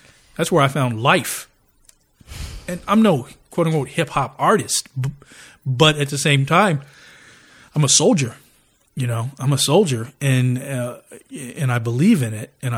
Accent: American